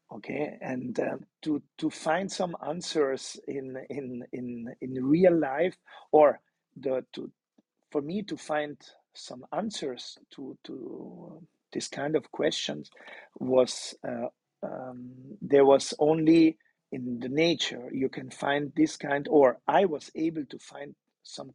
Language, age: English, 50-69